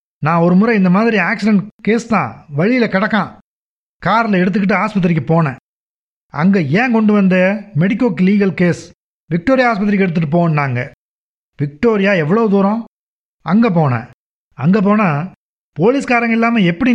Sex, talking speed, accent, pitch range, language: male, 125 wpm, native, 165-215 Hz, Tamil